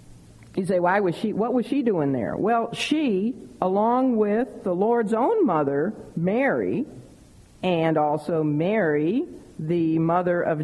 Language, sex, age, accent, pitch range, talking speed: English, female, 50-69, American, 155-200 Hz, 140 wpm